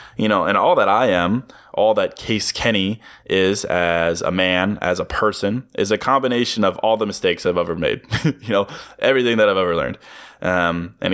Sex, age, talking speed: male, 20-39, 200 wpm